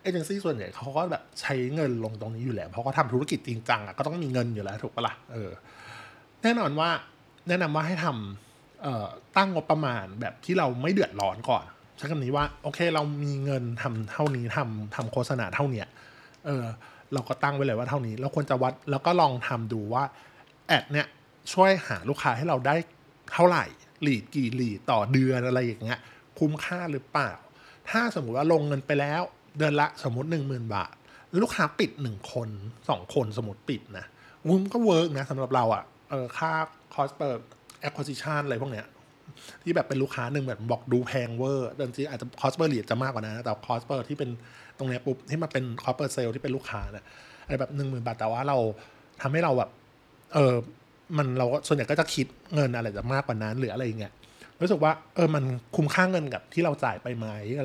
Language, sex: Thai, male